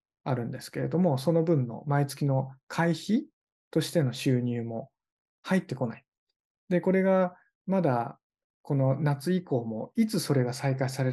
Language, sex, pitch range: Japanese, male, 130-165 Hz